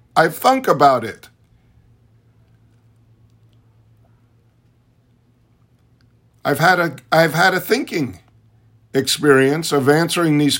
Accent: American